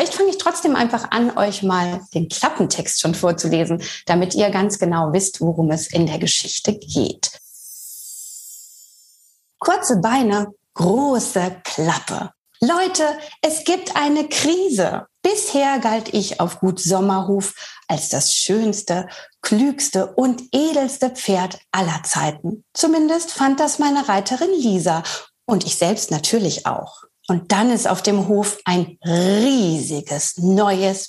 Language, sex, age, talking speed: German, female, 30-49, 130 wpm